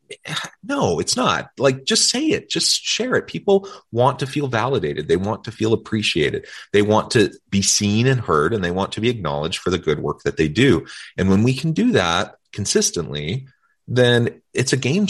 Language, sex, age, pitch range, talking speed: English, male, 30-49, 90-135 Hz, 205 wpm